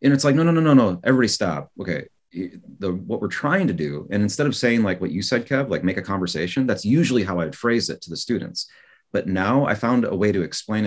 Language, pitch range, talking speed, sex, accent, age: English, 90-120 Hz, 260 wpm, male, American, 30-49